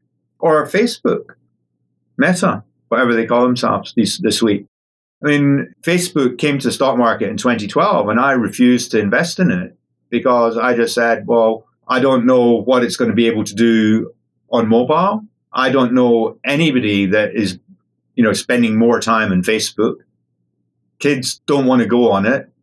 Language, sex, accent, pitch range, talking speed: English, male, British, 110-130 Hz, 170 wpm